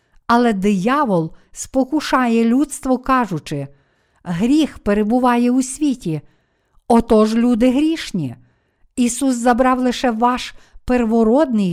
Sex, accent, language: female, native, Ukrainian